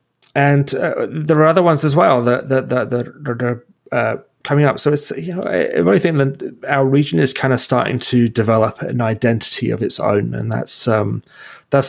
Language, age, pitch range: English, 30-49, 110-135 Hz